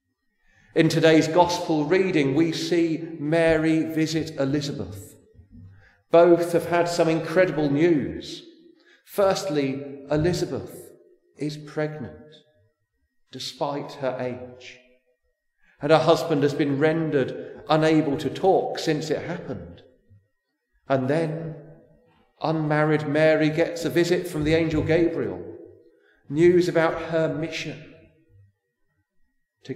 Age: 40-59